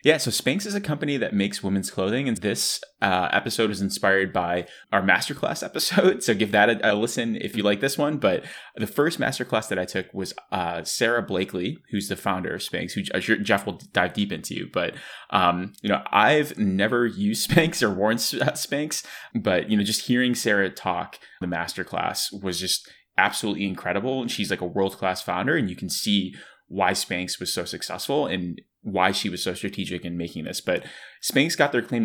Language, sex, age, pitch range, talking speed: English, male, 20-39, 95-120 Hz, 200 wpm